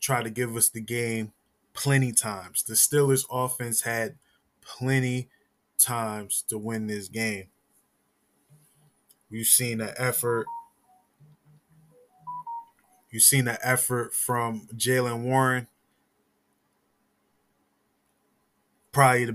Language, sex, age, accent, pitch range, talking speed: English, male, 20-39, American, 105-130 Hz, 95 wpm